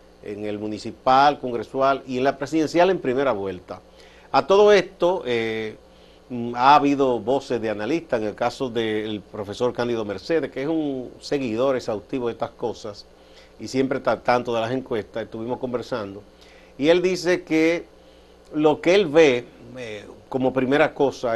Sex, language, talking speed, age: male, Spanish, 155 wpm, 50-69